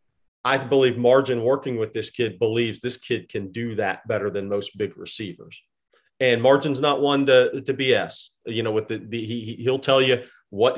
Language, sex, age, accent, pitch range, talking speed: English, male, 40-59, American, 115-135 Hz, 195 wpm